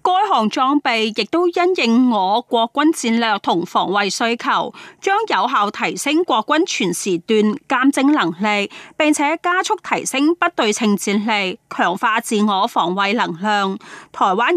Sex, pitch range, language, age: female, 205-300 Hz, Chinese, 20-39